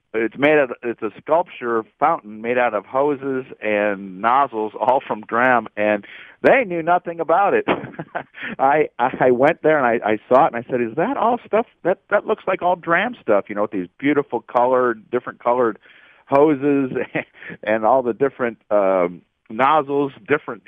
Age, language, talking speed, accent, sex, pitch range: 50-69, English, 180 wpm, American, male, 105-145 Hz